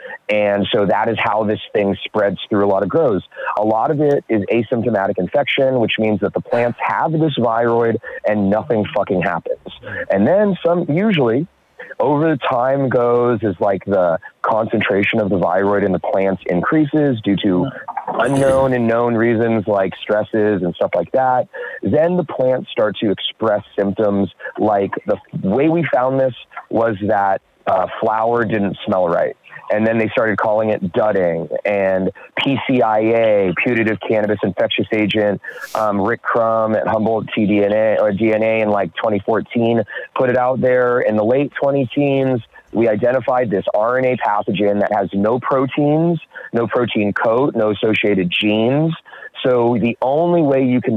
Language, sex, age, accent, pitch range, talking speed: English, male, 30-49, American, 100-130 Hz, 160 wpm